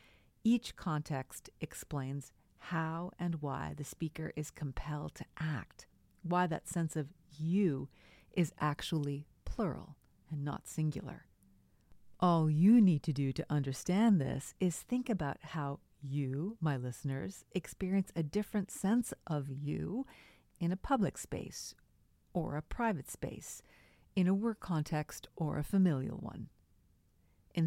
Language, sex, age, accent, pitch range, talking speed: English, female, 50-69, American, 145-185 Hz, 130 wpm